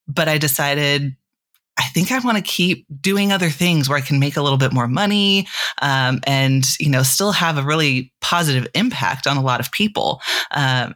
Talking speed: 205 wpm